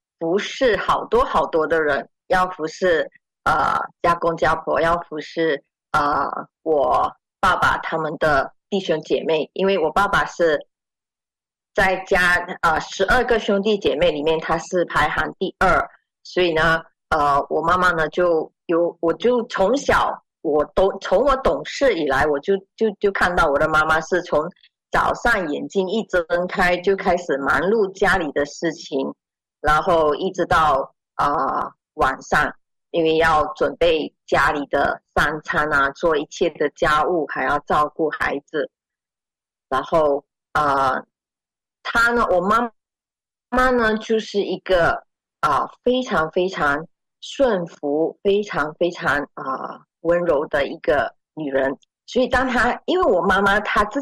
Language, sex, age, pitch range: Chinese, female, 30-49, 160-210 Hz